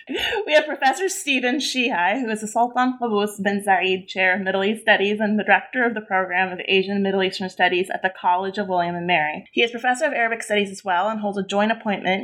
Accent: American